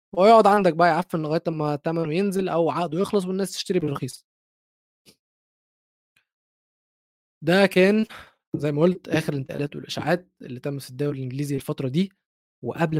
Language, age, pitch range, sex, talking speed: Arabic, 20-39, 135-170 Hz, male, 145 wpm